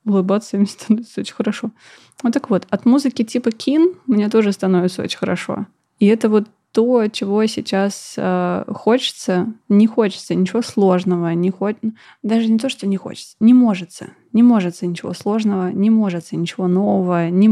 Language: Russian